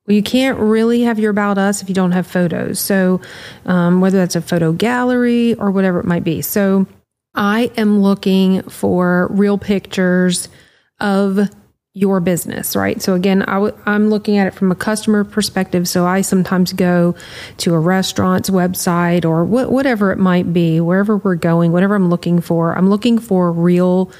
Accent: American